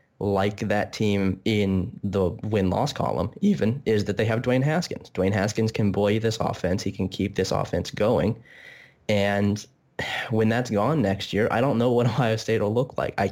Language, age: English, 20-39